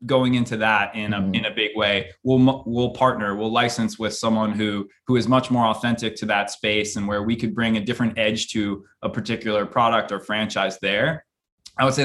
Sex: male